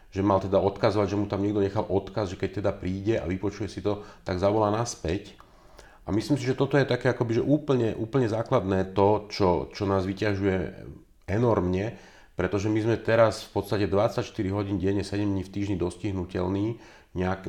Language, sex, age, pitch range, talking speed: Slovak, male, 40-59, 95-115 Hz, 190 wpm